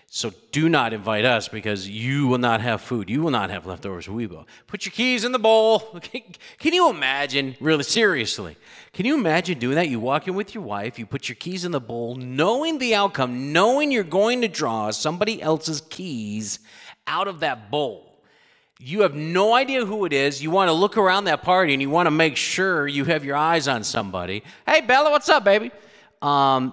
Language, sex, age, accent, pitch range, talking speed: English, male, 40-59, American, 140-220 Hz, 210 wpm